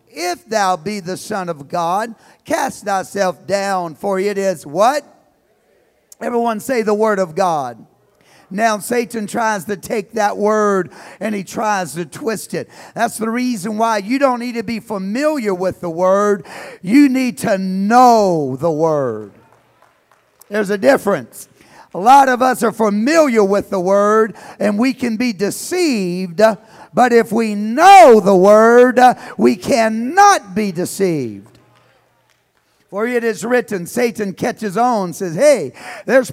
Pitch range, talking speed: 195-250 Hz, 150 wpm